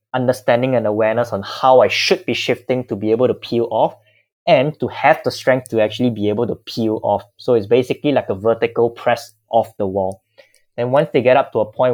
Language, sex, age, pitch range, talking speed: English, male, 20-39, 105-125 Hz, 225 wpm